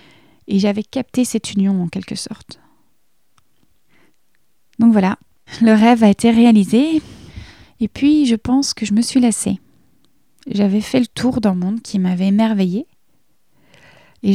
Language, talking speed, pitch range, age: French, 140 wpm, 195-230 Hz, 30-49